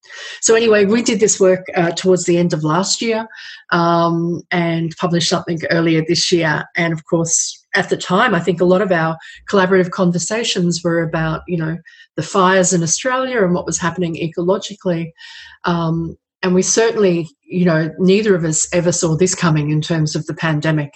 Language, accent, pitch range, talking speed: English, Australian, 165-205 Hz, 185 wpm